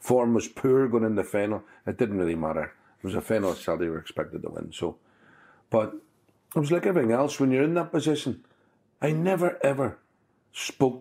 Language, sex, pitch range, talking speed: English, male, 100-130 Hz, 205 wpm